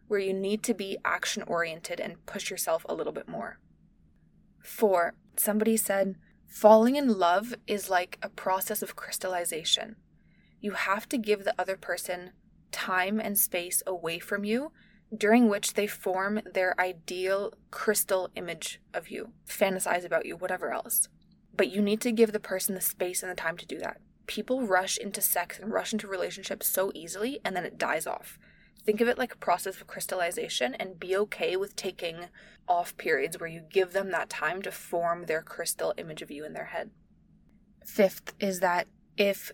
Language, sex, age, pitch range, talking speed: English, female, 20-39, 185-215 Hz, 180 wpm